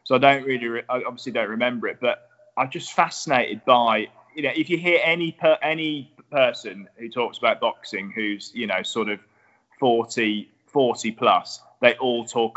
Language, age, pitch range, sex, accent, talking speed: English, 20-39, 110-135 Hz, male, British, 180 wpm